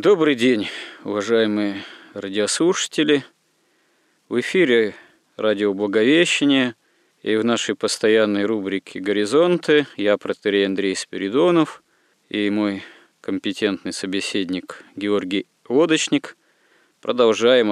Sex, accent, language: male, native, Russian